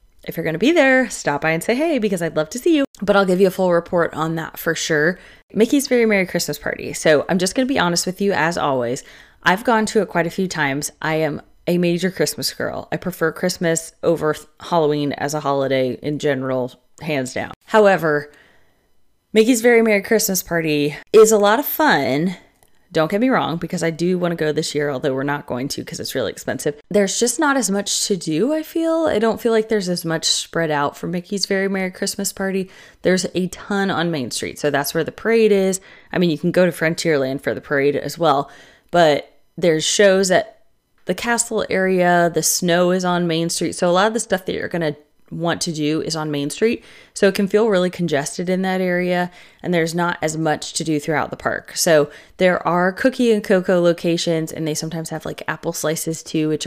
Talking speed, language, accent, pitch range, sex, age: 230 wpm, English, American, 155-195 Hz, female, 20-39